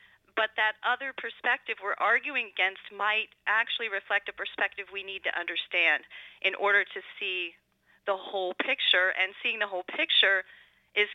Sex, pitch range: female, 195-240 Hz